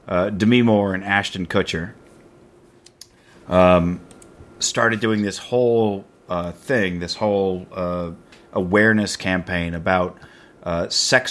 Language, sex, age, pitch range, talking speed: English, male, 30-49, 90-110 Hz, 110 wpm